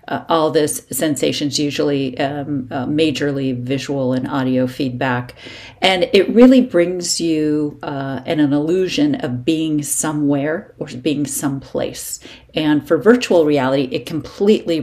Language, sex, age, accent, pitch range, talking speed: English, female, 40-59, American, 140-170 Hz, 135 wpm